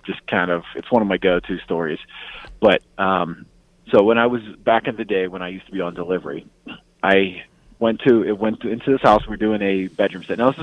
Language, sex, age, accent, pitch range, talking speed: English, male, 30-49, American, 100-130 Hz, 245 wpm